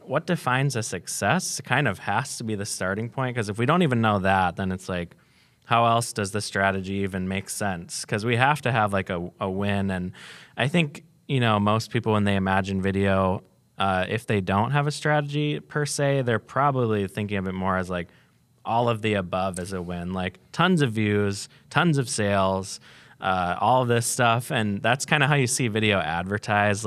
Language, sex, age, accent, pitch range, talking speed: English, male, 20-39, American, 95-130 Hz, 210 wpm